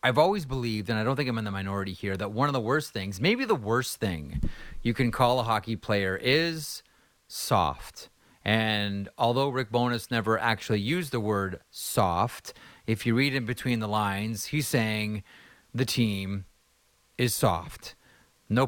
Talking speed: 175 wpm